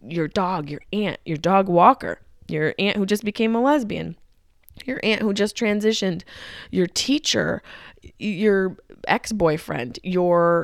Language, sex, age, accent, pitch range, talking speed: English, female, 20-39, American, 160-235 Hz, 135 wpm